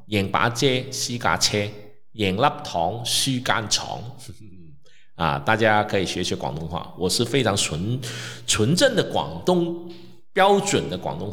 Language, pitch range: Chinese, 105-155 Hz